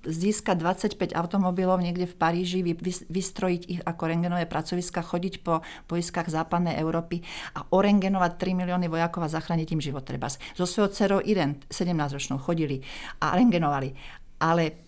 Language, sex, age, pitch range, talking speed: Slovak, female, 40-59, 165-190 Hz, 145 wpm